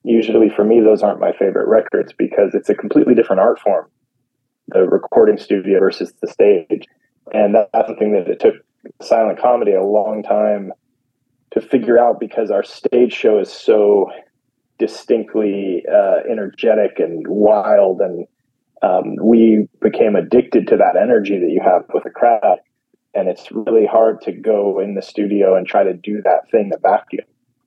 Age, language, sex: 20-39, English, male